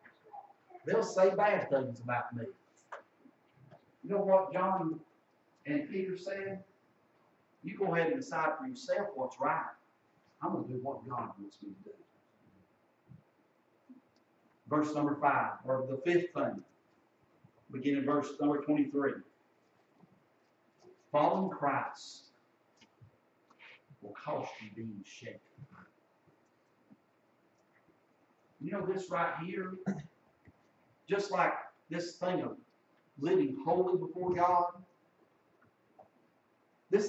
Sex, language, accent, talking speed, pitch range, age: male, English, American, 105 wpm, 155-205 Hz, 50-69